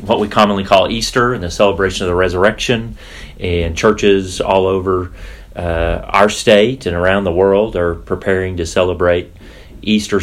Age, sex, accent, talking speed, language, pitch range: 30-49, male, American, 160 wpm, English, 90-100 Hz